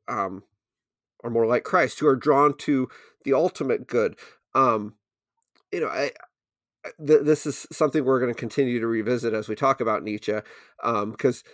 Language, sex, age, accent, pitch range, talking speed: English, male, 30-49, American, 120-155 Hz, 165 wpm